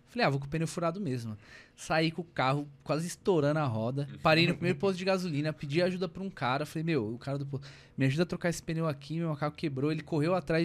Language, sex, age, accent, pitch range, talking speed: Portuguese, male, 20-39, Brazilian, 135-185 Hz, 260 wpm